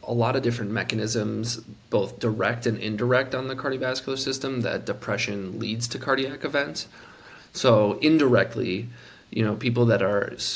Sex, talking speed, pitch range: male, 150 wpm, 110-120 Hz